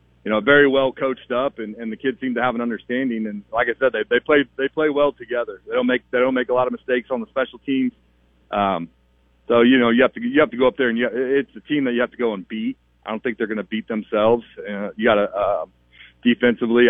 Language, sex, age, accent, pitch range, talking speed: English, male, 40-59, American, 105-120 Hz, 280 wpm